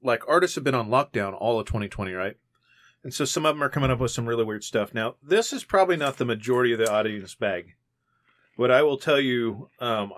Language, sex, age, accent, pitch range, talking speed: English, male, 40-59, American, 110-130 Hz, 235 wpm